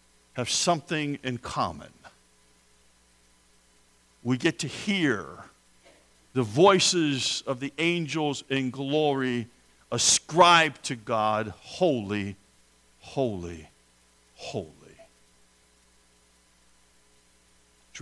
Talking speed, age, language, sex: 75 wpm, 50-69, English, male